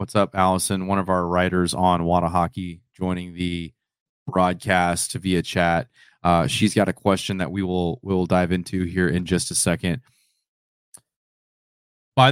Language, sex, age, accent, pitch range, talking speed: English, male, 30-49, American, 90-110 Hz, 150 wpm